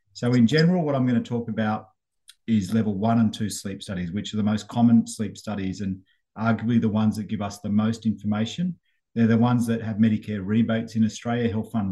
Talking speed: 215 wpm